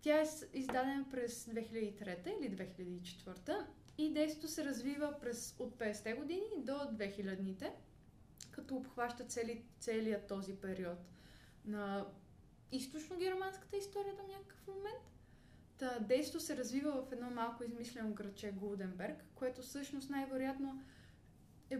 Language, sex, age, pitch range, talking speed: Bulgarian, female, 20-39, 210-280 Hz, 120 wpm